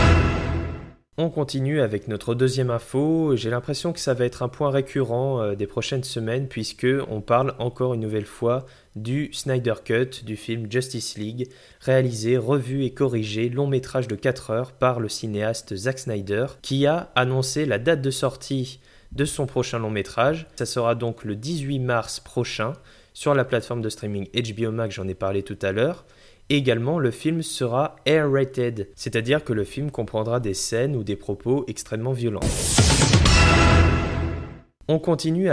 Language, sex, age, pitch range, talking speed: French, male, 20-39, 110-135 Hz, 160 wpm